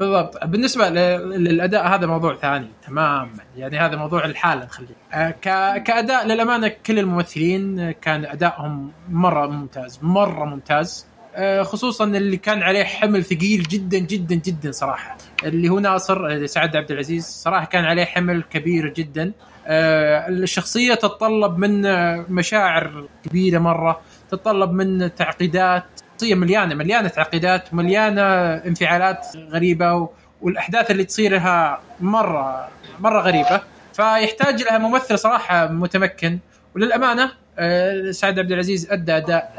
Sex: male